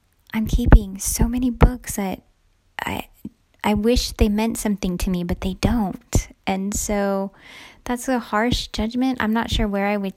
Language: English